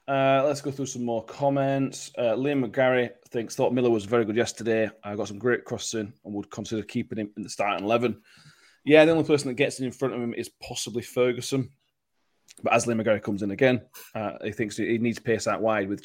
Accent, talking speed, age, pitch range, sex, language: British, 235 wpm, 30-49, 105-125 Hz, male, English